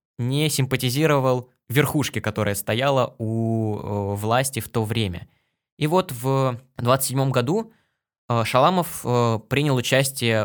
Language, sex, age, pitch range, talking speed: Russian, male, 20-39, 115-140 Hz, 105 wpm